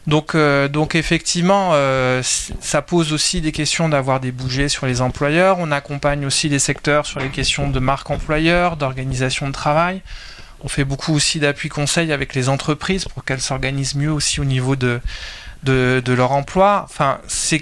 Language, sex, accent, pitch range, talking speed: French, male, French, 135-155 Hz, 180 wpm